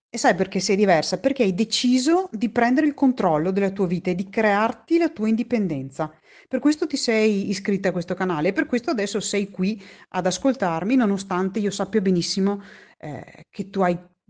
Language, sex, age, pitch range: Italian, female, 30-49, 170-240 Hz